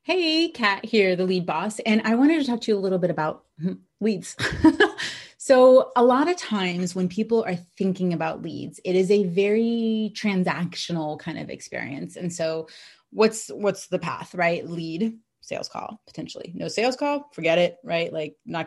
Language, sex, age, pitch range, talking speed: English, female, 30-49, 175-235 Hz, 180 wpm